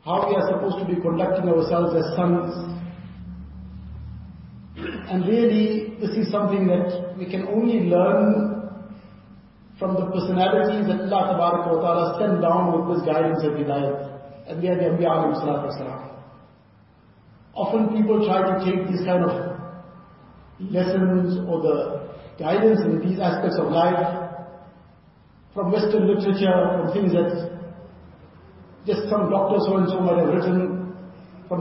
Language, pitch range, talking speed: English, 170-195 Hz, 140 wpm